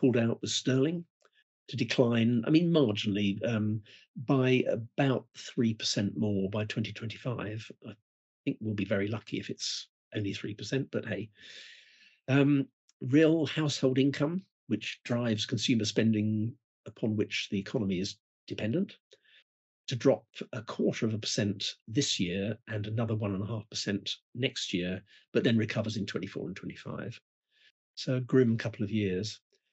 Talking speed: 145 wpm